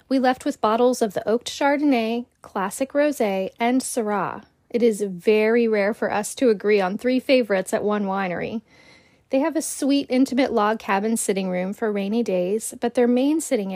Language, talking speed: English, 185 wpm